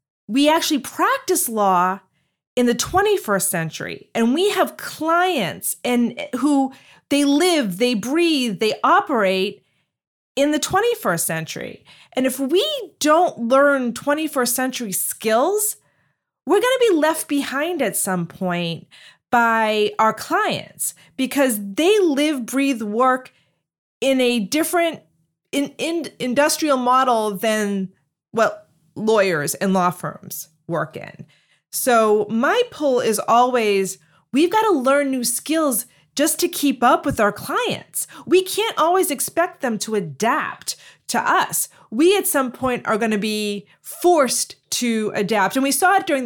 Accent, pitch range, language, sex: American, 200-295 Hz, English, female